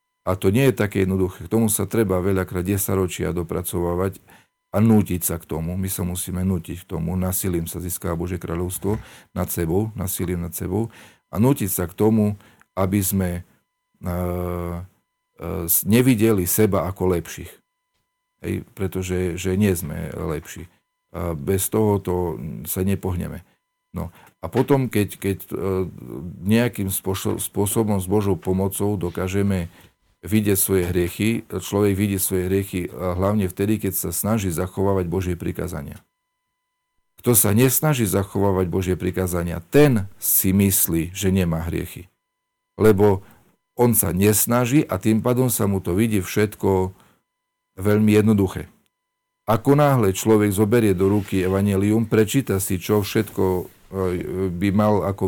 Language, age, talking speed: Slovak, 40-59, 135 wpm